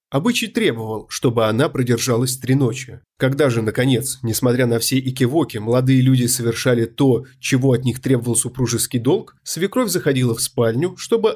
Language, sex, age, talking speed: Russian, male, 20-39, 155 wpm